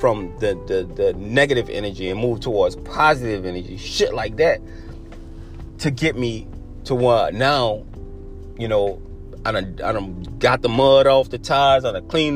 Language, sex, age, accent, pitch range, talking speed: English, male, 30-49, American, 95-130 Hz, 175 wpm